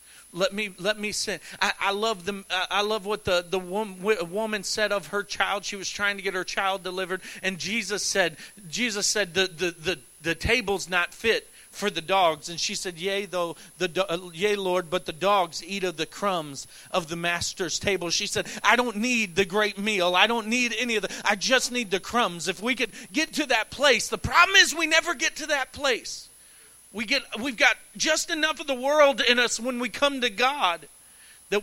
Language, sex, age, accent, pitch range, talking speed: English, male, 40-59, American, 185-255 Hz, 215 wpm